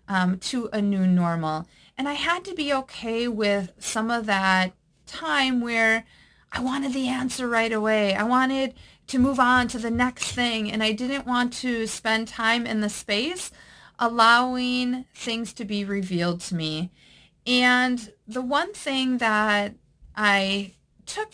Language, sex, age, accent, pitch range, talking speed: English, female, 40-59, American, 195-255 Hz, 155 wpm